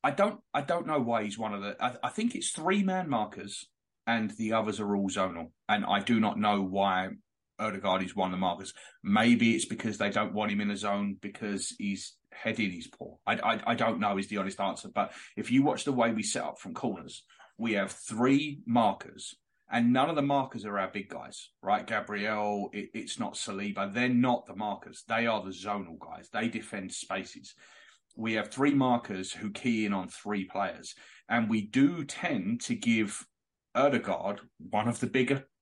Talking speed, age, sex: 210 wpm, 30-49, male